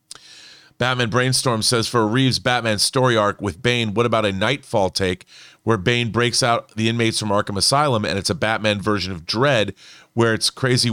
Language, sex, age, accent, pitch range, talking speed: English, male, 40-59, American, 105-125 Hz, 185 wpm